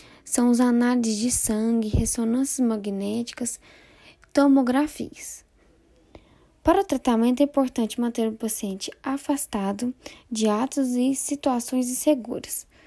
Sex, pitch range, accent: female, 230-280 Hz, Brazilian